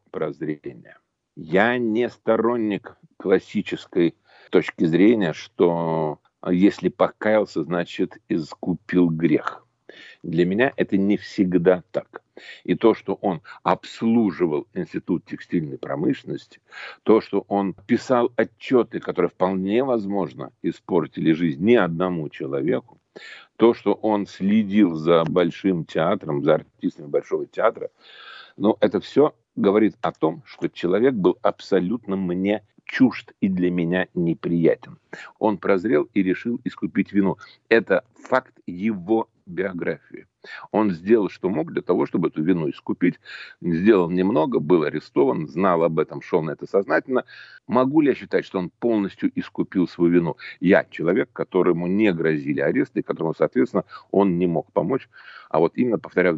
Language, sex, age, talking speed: Russian, male, 50-69, 135 wpm